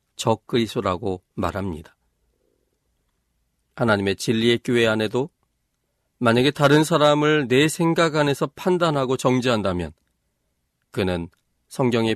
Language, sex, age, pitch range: Korean, male, 40-59, 95-145 Hz